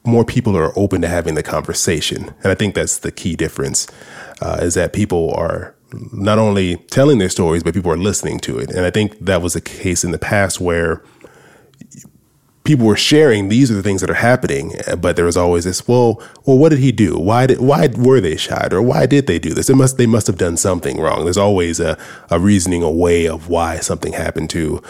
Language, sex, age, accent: English, male, 20-39, American